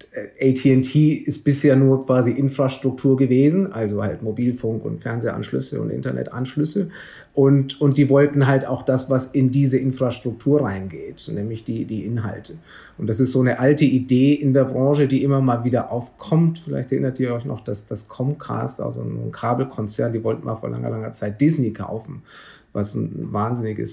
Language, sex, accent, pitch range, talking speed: German, male, German, 115-140 Hz, 170 wpm